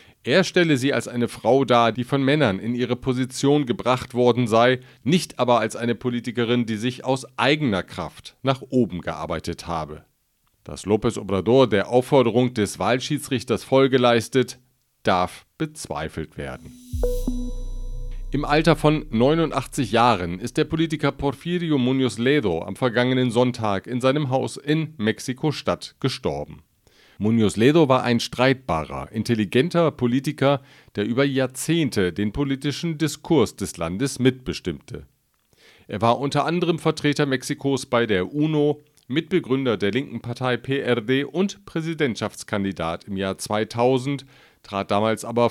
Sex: male